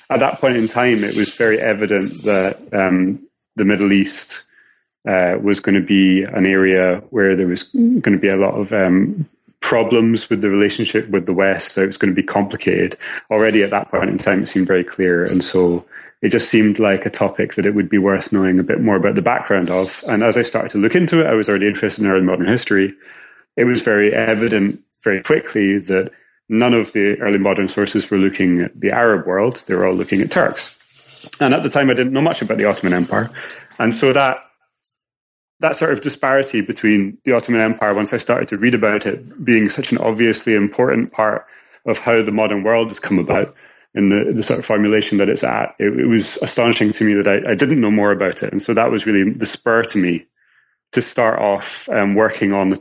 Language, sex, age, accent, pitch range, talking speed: English, male, 30-49, British, 95-115 Hz, 225 wpm